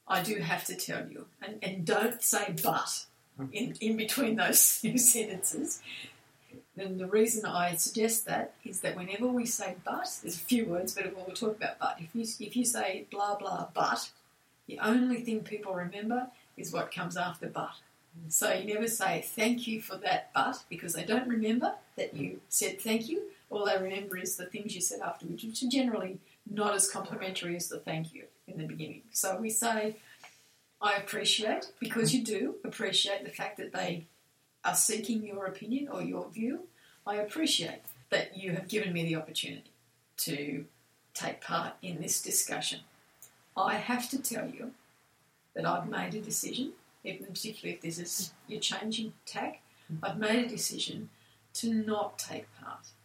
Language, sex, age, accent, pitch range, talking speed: English, female, 40-59, Australian, 180-230 Hz, 175 wpm